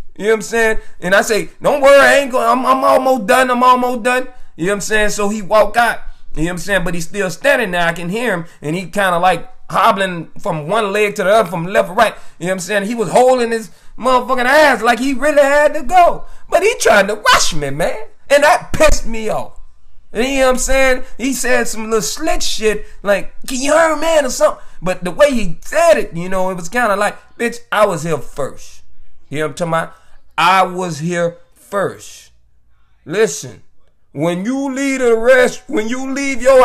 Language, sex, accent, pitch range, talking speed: English, male, American, 190-255 Hz, 235 wpm